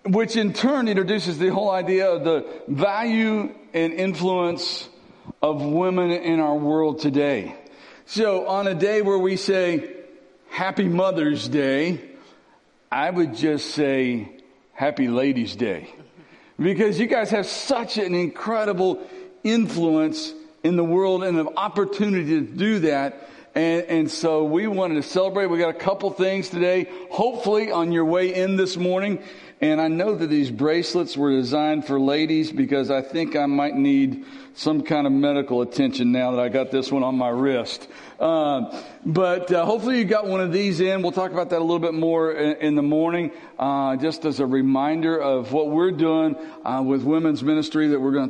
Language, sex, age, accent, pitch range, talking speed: English, male, 50-69, American, 150-190 Hz, 175 wpm